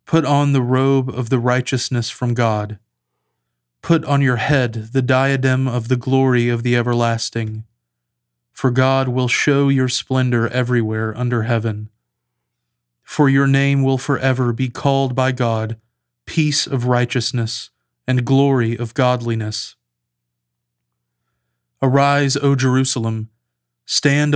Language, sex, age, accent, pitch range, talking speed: English, male, 30-49, American, 110-135 Hz, 125 wpm